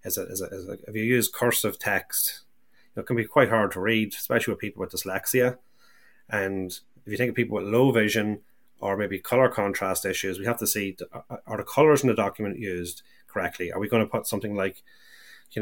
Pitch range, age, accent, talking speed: 95-110 Hz, 30-49, Irish, 225 wpm